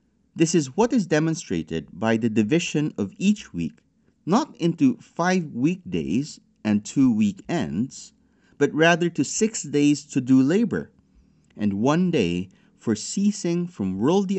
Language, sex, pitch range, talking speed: English, male, 110-185 Hz, 140 wpm